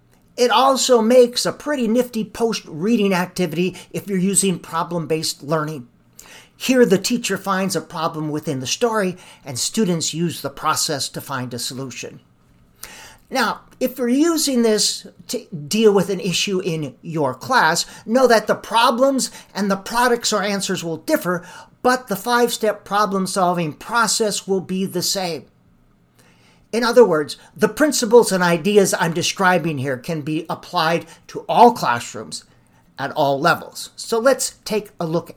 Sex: male